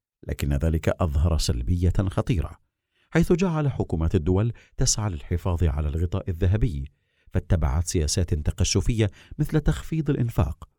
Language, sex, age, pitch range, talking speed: Arabic, male, 50-69, 80-115 Hz, 110 wpm